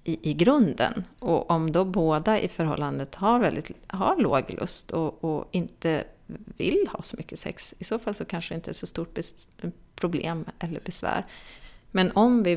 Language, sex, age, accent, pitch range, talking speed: Swedish, female, 30-49, native, 155-190 Hz, 185 wpm